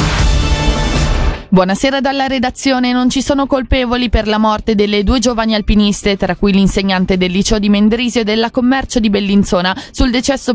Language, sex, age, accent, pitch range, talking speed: Italian, female, 20-39, native, 190-250 Hz, 160 wpm